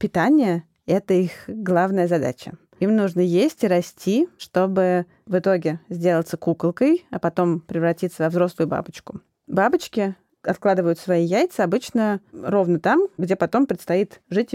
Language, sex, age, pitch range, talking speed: Russian, female, 20-39, 175-220 Hz, 130 wpm